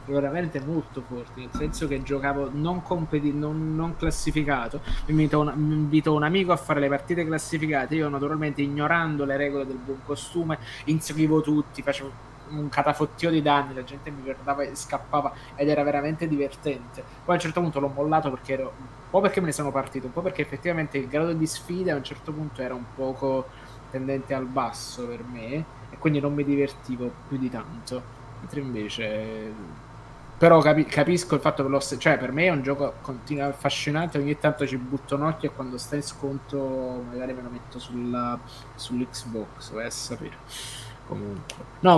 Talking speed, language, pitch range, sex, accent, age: 185 wpm, Italian, 130-150 Hz, male, native, 20-39